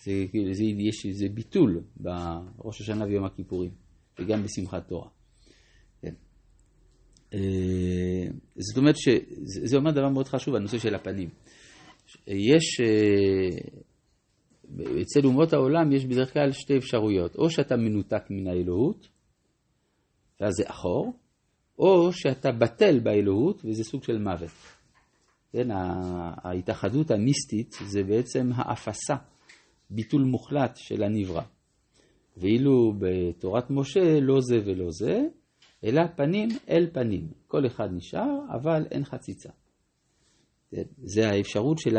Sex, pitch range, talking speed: male, 95-135 Hz, 115 wpm